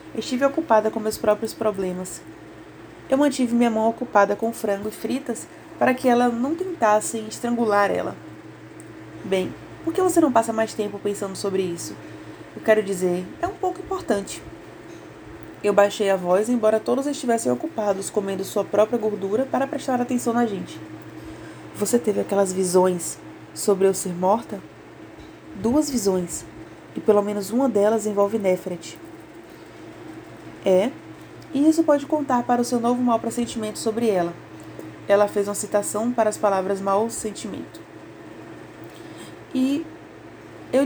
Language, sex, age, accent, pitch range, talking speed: Portuguese, female, 20-39, Brazilian, 195-240 Hz, 145 wpm